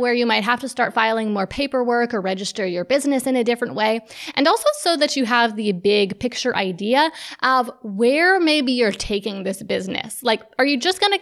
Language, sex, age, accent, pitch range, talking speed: English, female, 20-39, American, 220-270 Hz, 210 wpm